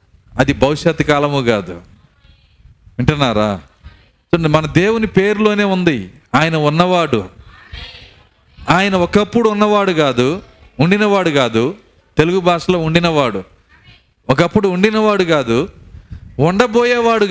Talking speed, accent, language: 85 wpm, native, Telugu